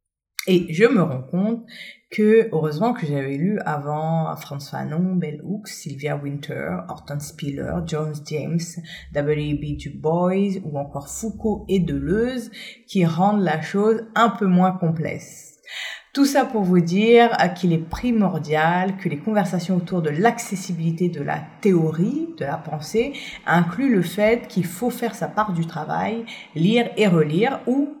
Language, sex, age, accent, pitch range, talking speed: French, female, 30-49, French, 150-200 Hz, 155 wpm